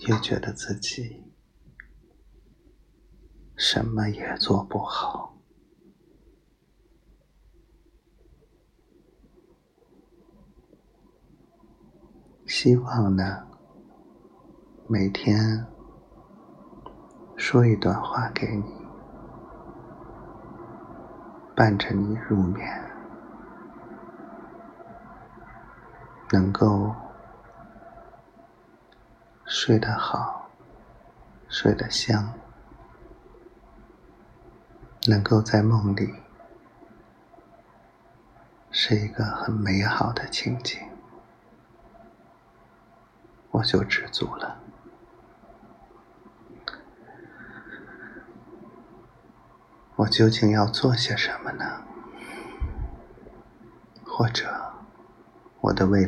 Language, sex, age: Chinese, male, 50-69